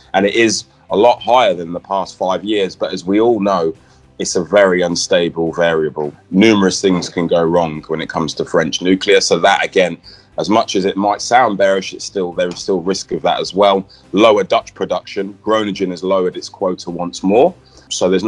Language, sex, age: English, male, 20-39